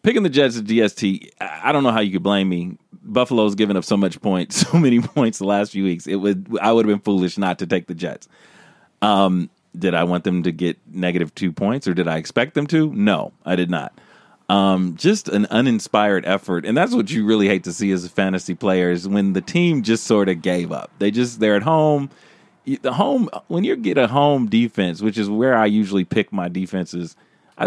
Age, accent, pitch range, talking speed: 30-49, American, 90-120 Hz, 230 wpm